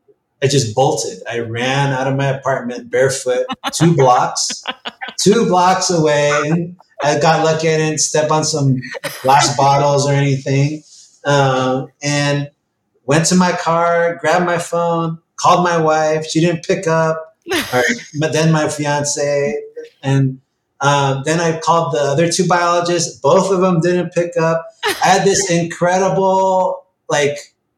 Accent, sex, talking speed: American, male, 145 wpm